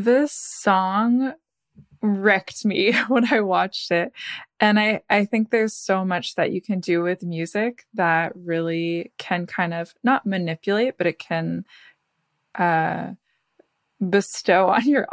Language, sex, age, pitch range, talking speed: English, female, 20-39, 170-210 Hz, 140 wpm